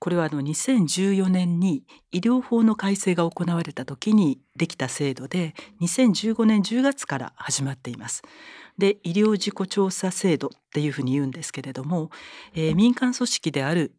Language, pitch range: Japanese, 150-215 Hz